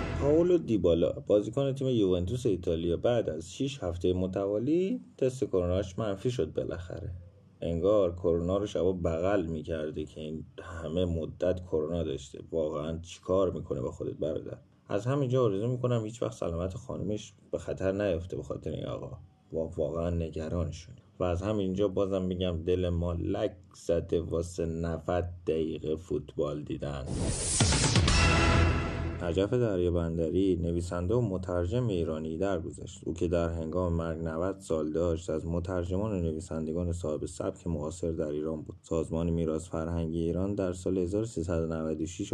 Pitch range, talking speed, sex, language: 80-100 Hz, 140 wpm, male, Persian